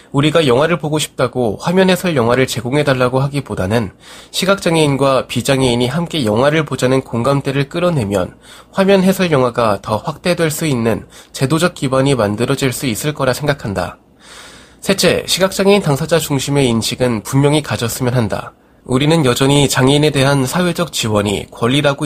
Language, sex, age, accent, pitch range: Korean, male, 20-39, native, 120-155 Hz